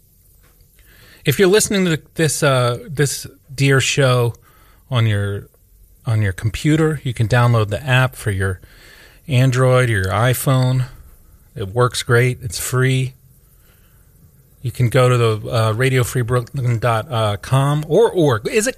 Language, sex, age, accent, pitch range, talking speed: English, male, 30-49, American, 100-130 Hz, 135 wpm